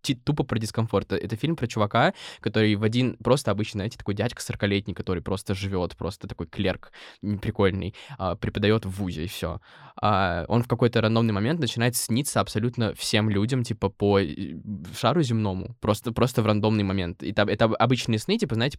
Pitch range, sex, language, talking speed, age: 105-125 Hz, male, Russian, 180 wpm, 20-39